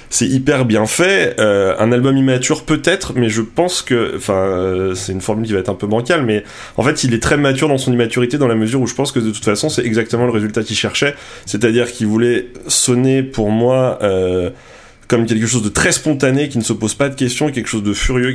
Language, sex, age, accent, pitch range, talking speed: French, male, 20-39, French, 95-125 Hz, 240 wpm